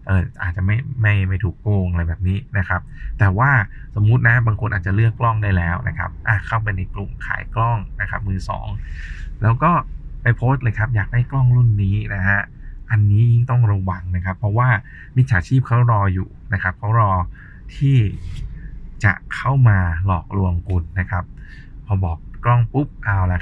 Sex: male